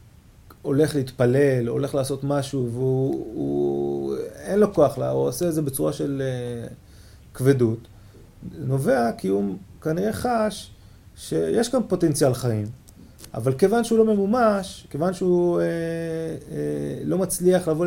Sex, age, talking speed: male, 30-49, 140 wpm